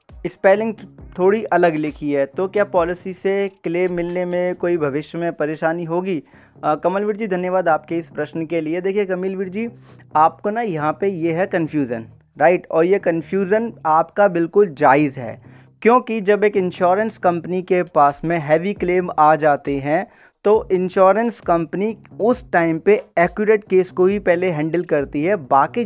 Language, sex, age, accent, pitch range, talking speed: Hindi, male, 20-39, native, 155-195 Hz, 165 wpm